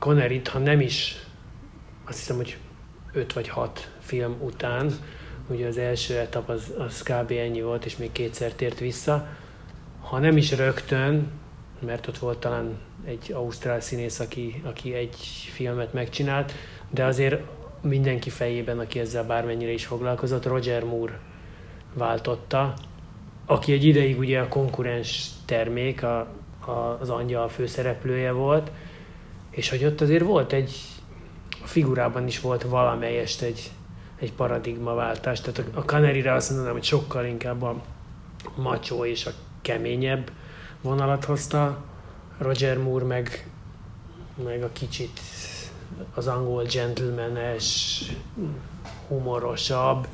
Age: 30-49